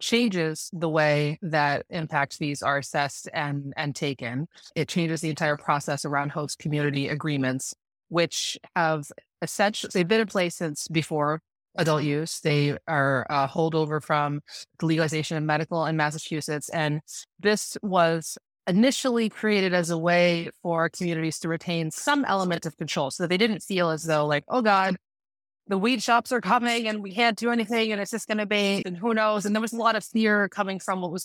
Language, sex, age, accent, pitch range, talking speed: English, female, 30-49, American, 150-195 Hz, 185 wpm